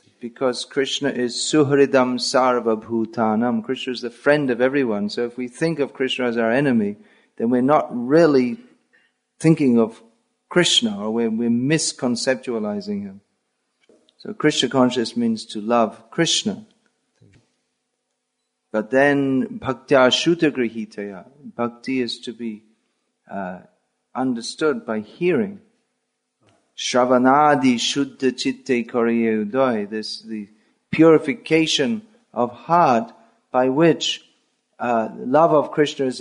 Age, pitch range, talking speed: 40-59, 120-155 Hz, 110 wpm